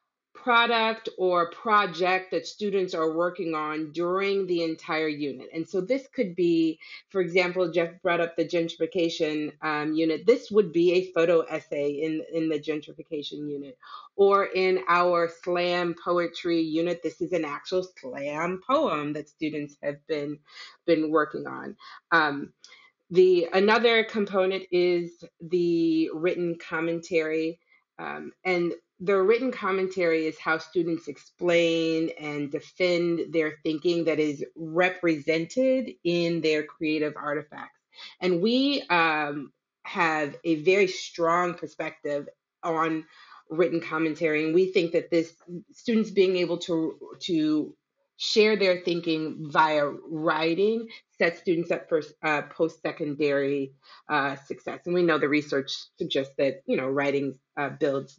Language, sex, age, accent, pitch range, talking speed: English, female, 30-49, American, 155-185 Hz, 135 wpm